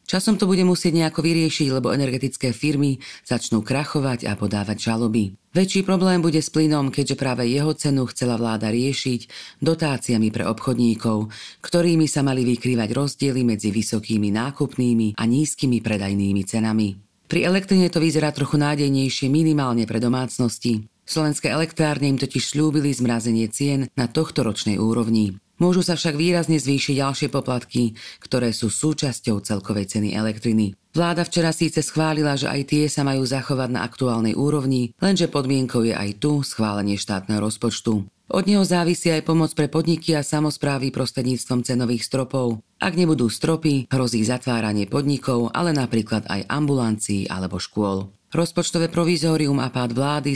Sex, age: female, 40-59